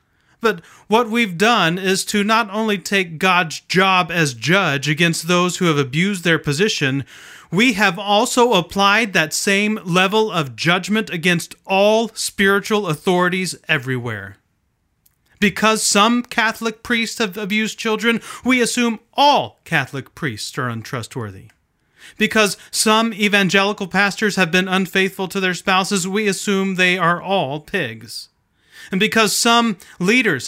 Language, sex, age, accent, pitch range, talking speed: English, male, 30-49, American, 155-210 Hz, 135 wpm